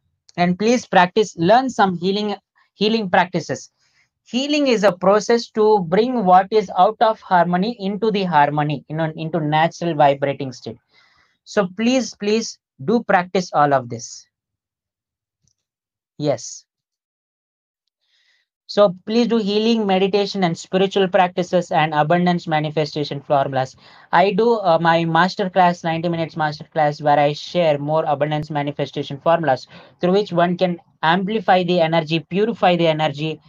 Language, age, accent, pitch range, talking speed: English, 20-39, Indian, 145-190 Hz, 135 wpm